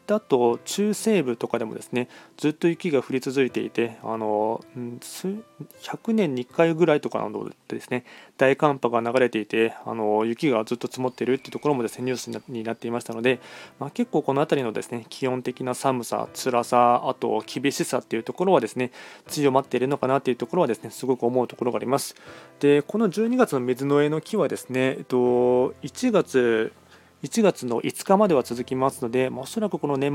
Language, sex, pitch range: Japanese, male, 120-150 Hz